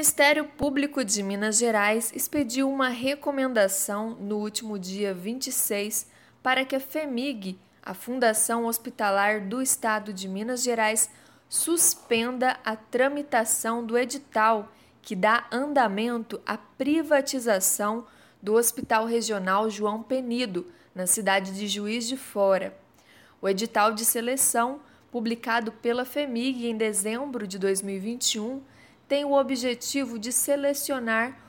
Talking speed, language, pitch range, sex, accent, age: 120 wpm, Portuguese, 210-260 Hz, female, Brazilian, 20-39